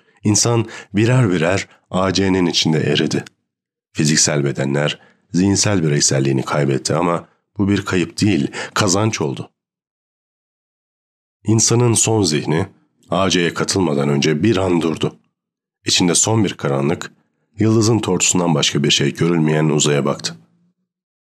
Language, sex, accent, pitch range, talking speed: Turkish, male, native, 80-110 Hz, 110 wpm